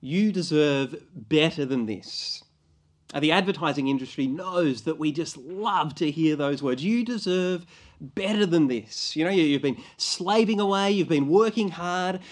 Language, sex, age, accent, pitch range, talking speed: English, male, 30-49, Australian, 150-215 Hz, 160 wpm